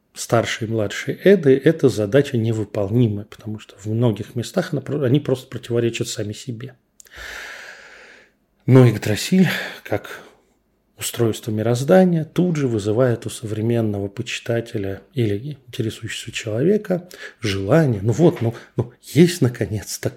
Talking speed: 115 wpm